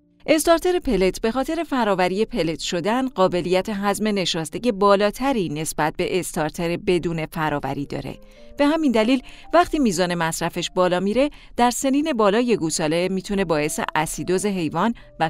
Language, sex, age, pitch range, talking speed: Persian, female, 40-59, 160-245 Hz, 135 wpm